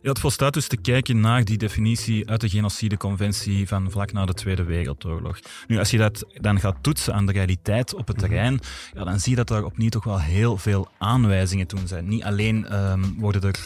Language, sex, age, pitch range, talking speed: Dutch, male, 30-49, 95-115 Hz, 215 wpm